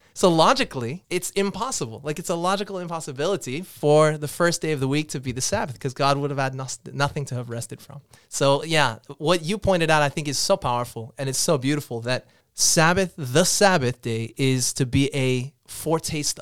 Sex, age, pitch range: male, 20-39, 125-160 Hz